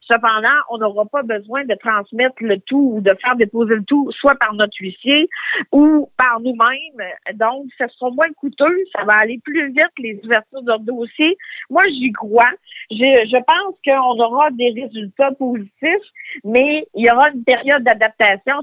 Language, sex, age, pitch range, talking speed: French, female, 50-69, 225-285 Hz, 175 wpm